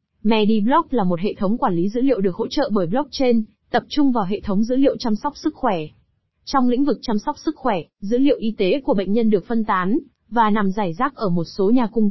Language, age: Vietnamese, 20-39